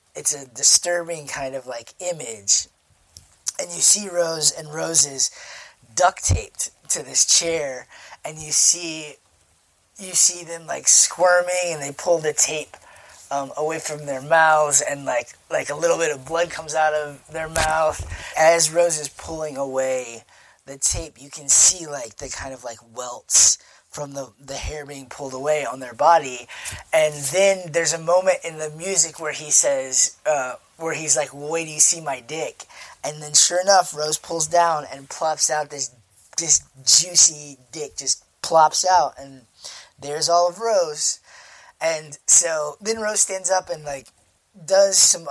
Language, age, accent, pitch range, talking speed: English, 20-39, American, 140-170 Hz, 170 wpm